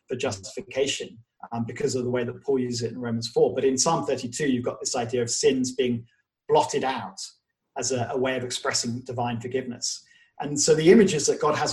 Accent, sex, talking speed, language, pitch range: British, male, 220 wpm, English, 120-155 Hz